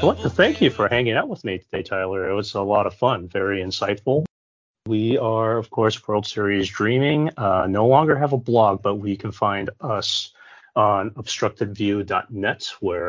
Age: 30-49